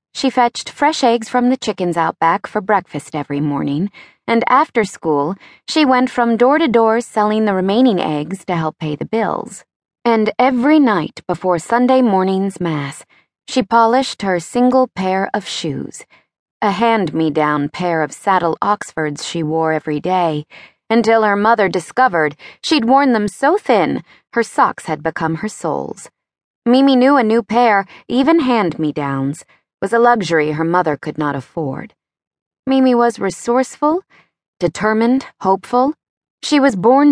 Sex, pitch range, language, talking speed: female, 165-240 Hz, English, 150 wpm